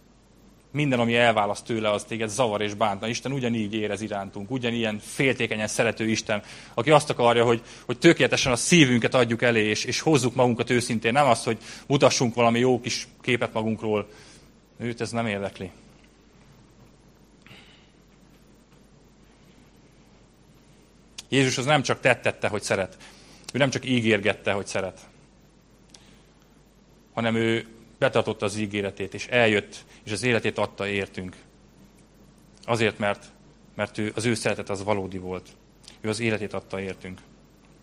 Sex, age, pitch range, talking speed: male, 30-49, 105-125 Hz, 135 wpm